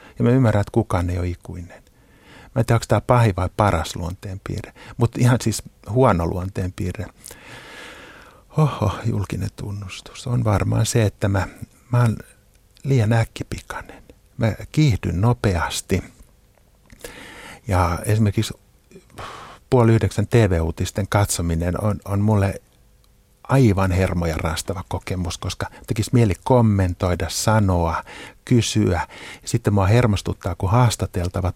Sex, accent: male, native